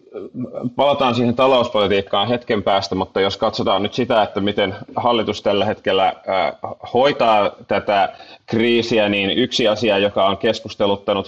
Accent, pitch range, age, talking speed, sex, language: native, 85-105 Hz, 30-49, 130 wpm, male, Finnish